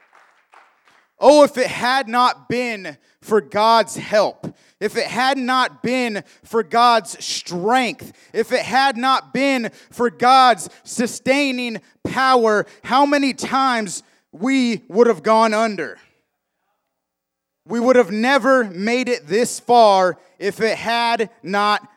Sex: male